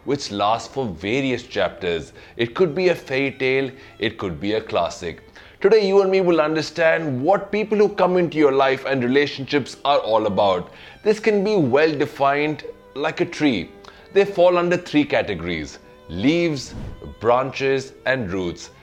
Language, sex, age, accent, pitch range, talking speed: English, male, 30-49, Indian, 120-175 Hz, 165 wpm